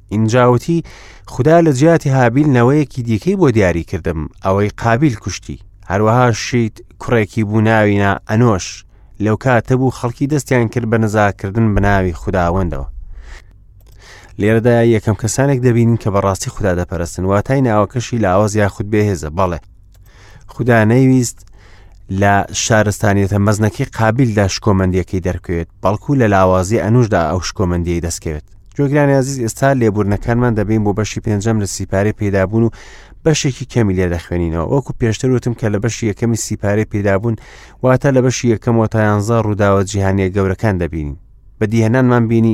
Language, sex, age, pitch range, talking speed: English, male, 30-49, 95-120 Hz, 145 wpm